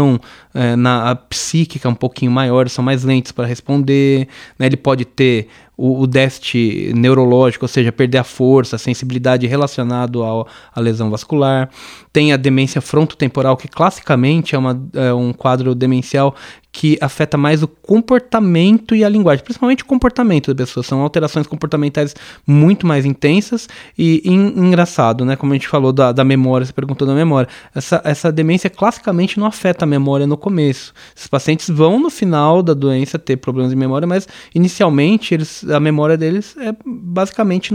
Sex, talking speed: male, 170 wpm